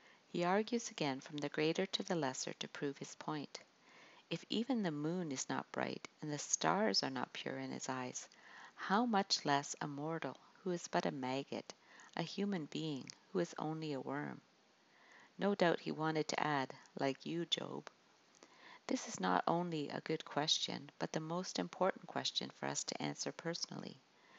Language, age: English, 50-69